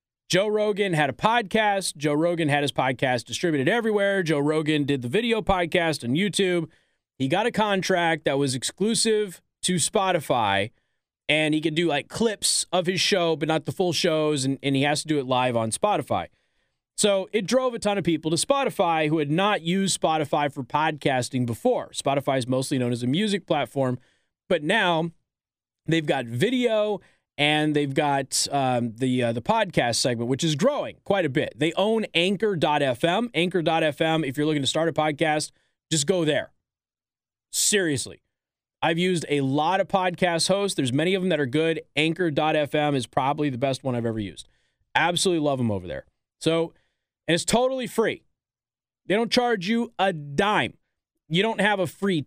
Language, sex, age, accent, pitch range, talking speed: English, male, 30-49, American, 140-190 Hz, 180 wpm